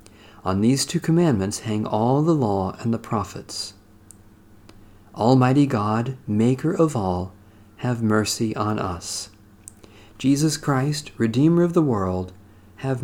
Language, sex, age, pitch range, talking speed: English, male, 40-59, 100-130 Hz, 125 wpm